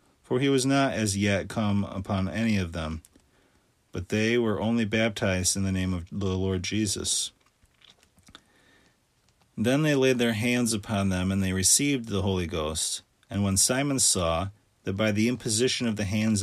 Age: 40-59